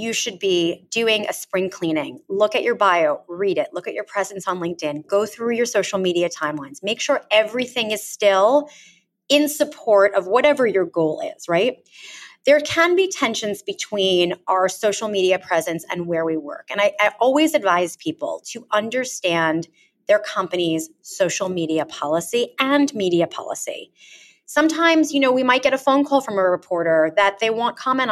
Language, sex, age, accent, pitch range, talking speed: English, female, 30-49, American, 185-270 Hz, 175 wpm